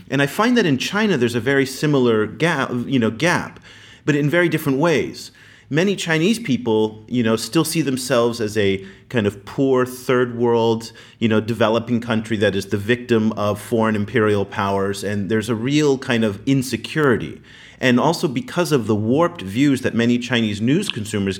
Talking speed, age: 180 wpm, 40-59